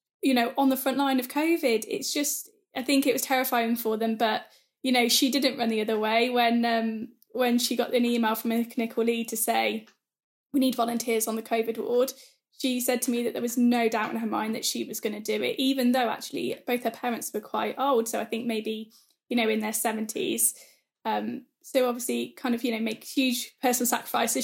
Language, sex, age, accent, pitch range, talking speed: English, female, 10-29, British, 230-255 Hz, 230 wpm